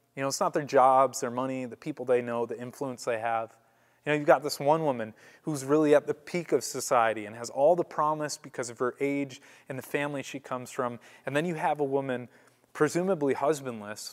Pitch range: 115-145 Hz